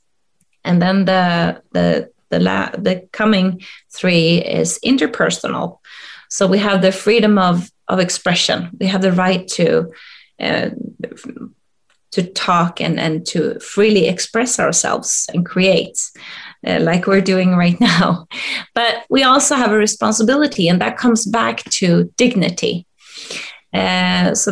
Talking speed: 135 wpm